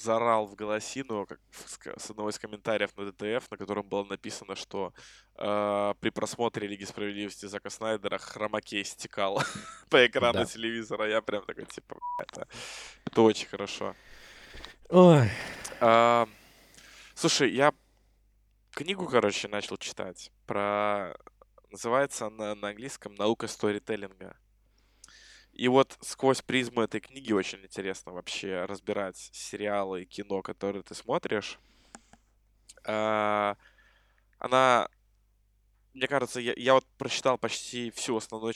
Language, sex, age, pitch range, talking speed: Russian, male, 20-39, 100-120 Hz, 110 wpm